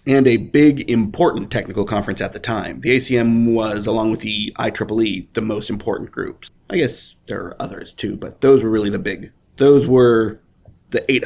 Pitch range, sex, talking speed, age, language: 105-140 Hz, male, 185 wpm, 30-49, English